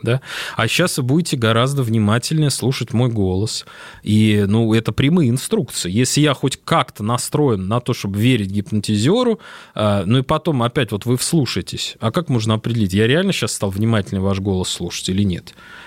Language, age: Russian, 20-39